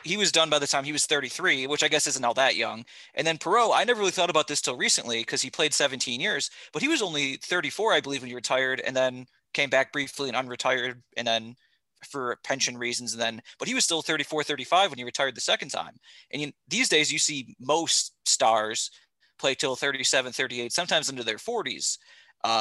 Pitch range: 125-155 Hz